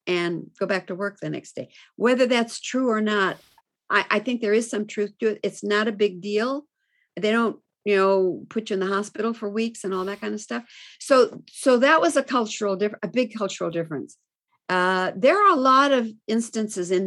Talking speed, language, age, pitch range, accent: 220 wpm, English, 50-69, 180-235 Hz, American